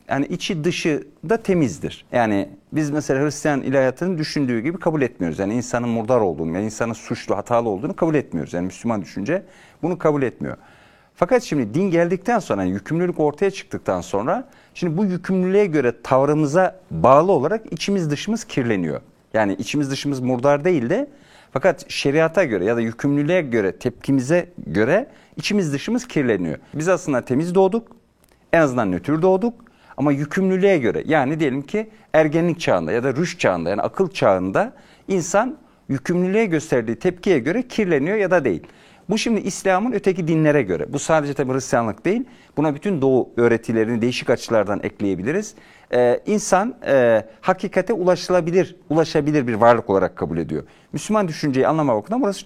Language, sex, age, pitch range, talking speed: Turkish, male, 50-69, 130-190 Hz, 155 wpm